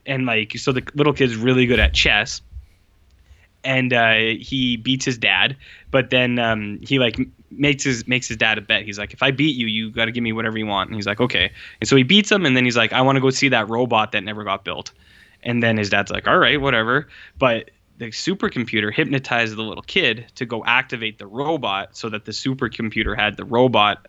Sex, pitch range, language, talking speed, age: male, 110-135 Hz, English, 230 wpm, 10-29